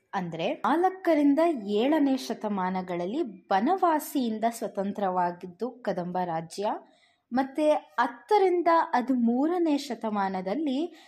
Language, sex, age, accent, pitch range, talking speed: Kannada, female, 20-39, native, 195-315 Hz, 65 wpm